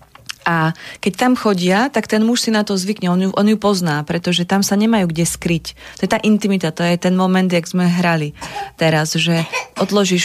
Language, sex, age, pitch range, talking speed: Slovak, female, 30-49, 165-210 Hz, 210 wpm